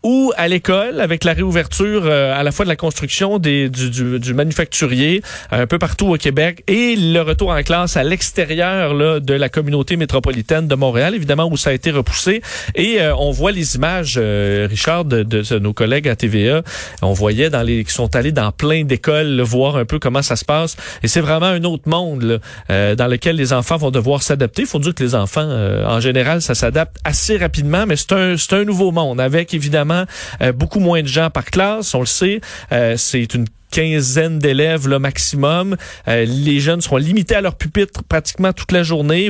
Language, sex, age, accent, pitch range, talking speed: French, male, 40-59, Canadian, 130-170 Hz, 215 wpm